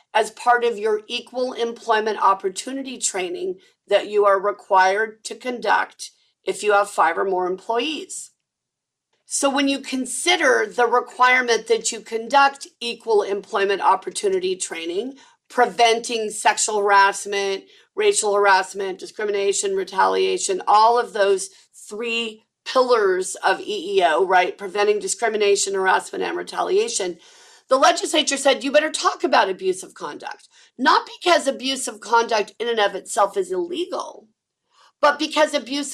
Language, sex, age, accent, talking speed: English, female, 40-59, American, 130 wpm